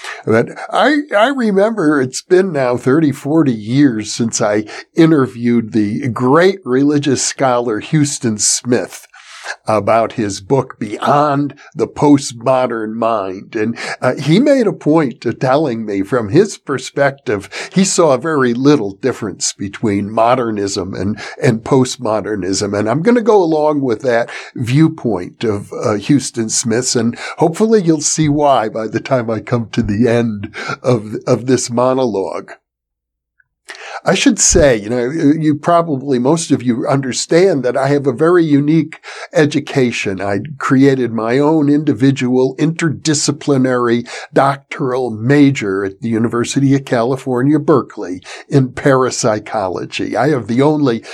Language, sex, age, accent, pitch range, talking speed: English, male, 50-69, American, 115-150 Hz, 135 wpm